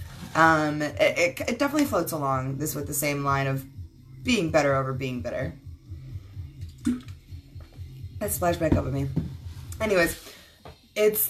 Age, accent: 20-39, American